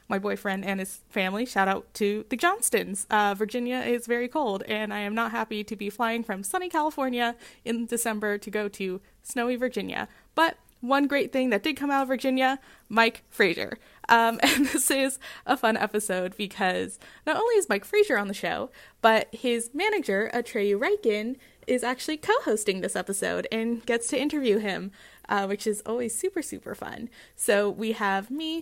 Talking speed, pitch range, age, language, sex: 180 wpm, 205-270 Hz, 20-39, English, female